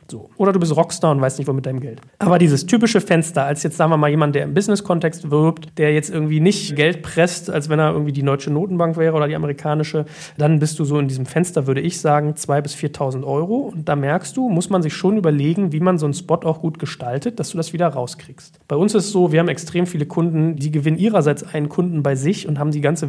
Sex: male